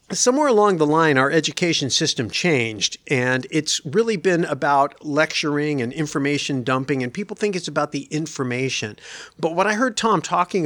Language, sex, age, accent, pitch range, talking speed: English, male, 50-69, American, 135-170 Hz, 170 wpm